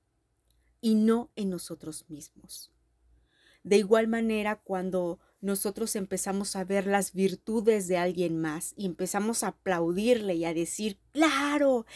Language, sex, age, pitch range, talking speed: Spanish, female, 30-49, 180-230 Hz, 130 wpm